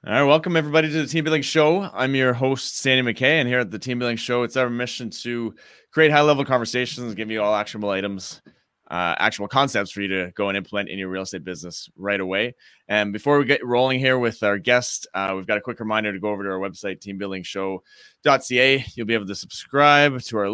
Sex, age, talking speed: male, 20-39, 230 wpm